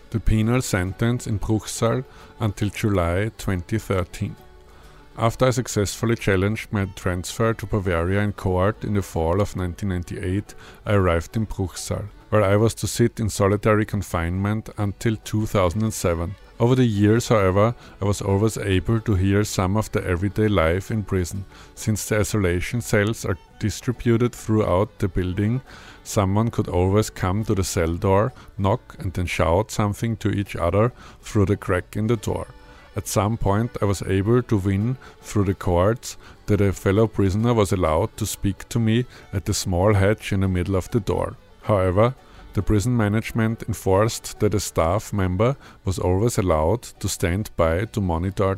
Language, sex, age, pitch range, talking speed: English, male, 50-69, 95-110 Hz, 165 wpm